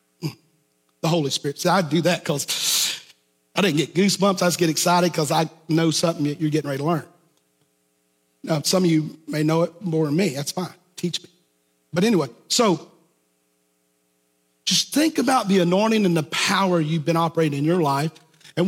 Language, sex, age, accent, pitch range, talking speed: English, male, 40-59, American, 135-185 Hz, 185 wpm